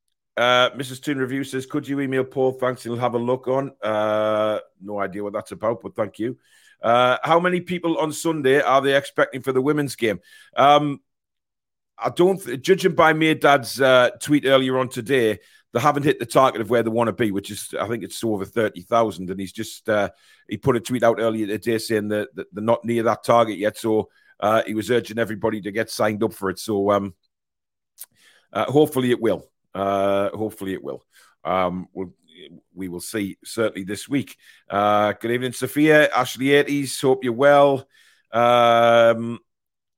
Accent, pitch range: British, 110-135 Hz